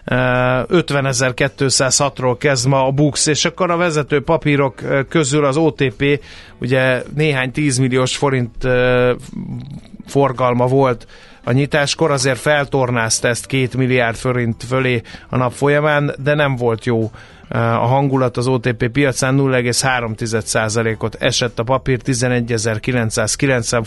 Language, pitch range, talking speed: Hungarian, 125-145 Hz, 115 wpm